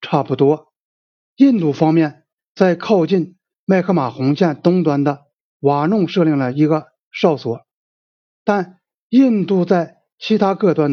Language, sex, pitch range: Chinese, male, 145-195 Hz